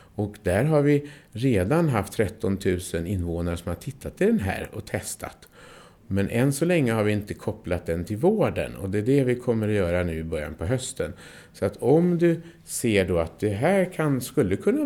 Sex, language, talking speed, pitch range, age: male, Swedish, 215 wpm, 95-150 Hz, 50-69